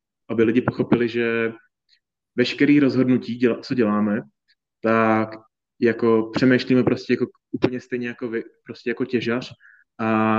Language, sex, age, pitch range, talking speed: Czech, male, 20-39, 115-125 Hz, 120 wpm